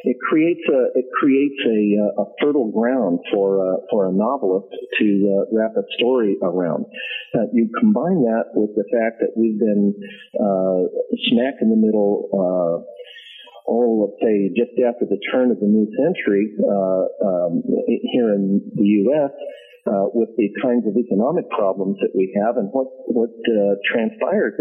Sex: male